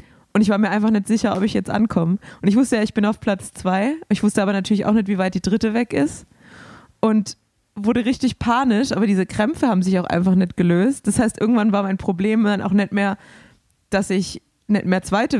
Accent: German